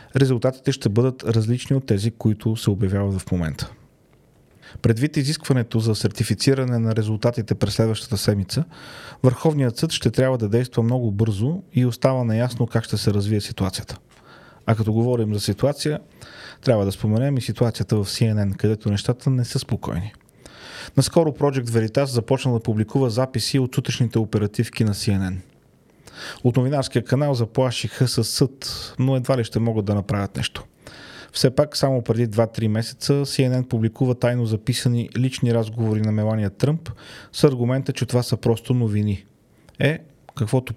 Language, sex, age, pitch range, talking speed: Bulgarian, male, 30-49, 110-135 Hz, 150 wpm